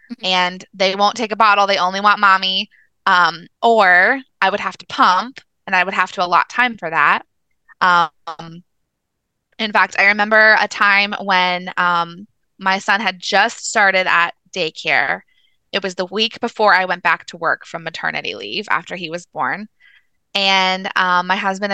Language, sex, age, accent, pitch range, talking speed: English, female, 20-39, American, 185-220 Hz, 175 wpm